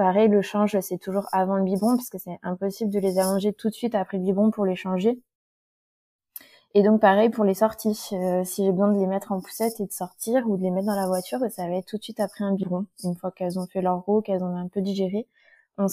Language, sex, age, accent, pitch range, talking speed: French, female, 20-39, French, 185-215 Hz, 270 wpm